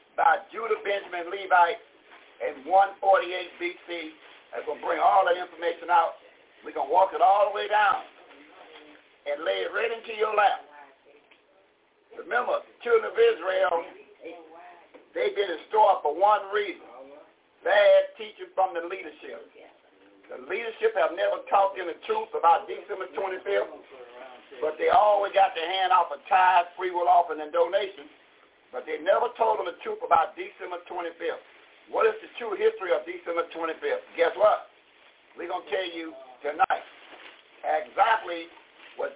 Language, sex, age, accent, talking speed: English, male, 50-69, American, 155 wpm